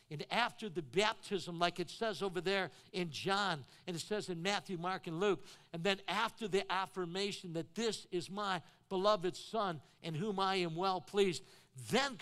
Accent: American